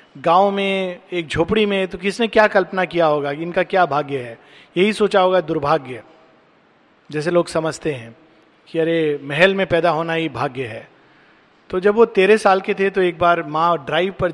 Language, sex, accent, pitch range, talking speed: Hindi, male, native, 160-195 Hz, 195 wpm